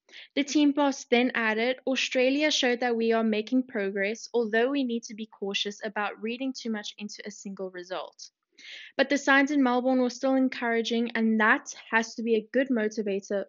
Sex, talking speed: female, 185 wpm